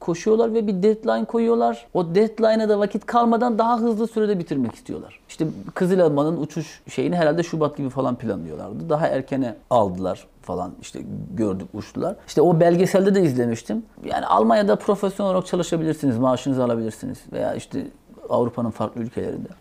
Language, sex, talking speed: Turkish, male, 150 wpm